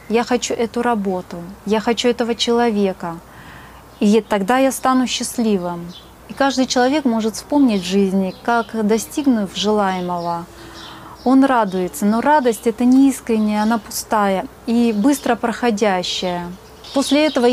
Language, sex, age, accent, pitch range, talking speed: Russian, female, 30-49, native, 200-275 Hz, 125 wpm